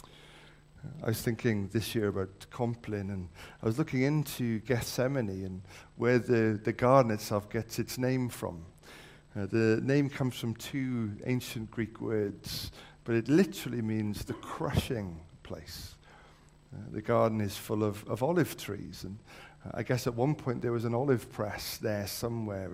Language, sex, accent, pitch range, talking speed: English, male, British, 105-125 Hz, 160 wpm